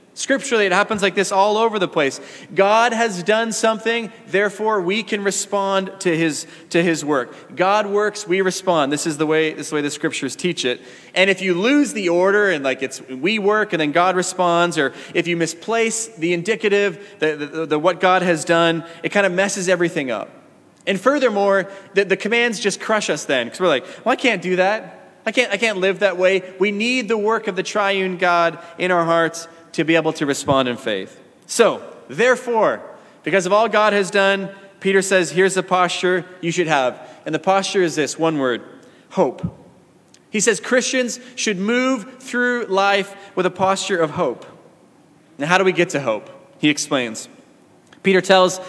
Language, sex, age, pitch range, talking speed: English, male, 20-39, 165-205 Hz, 200 wpm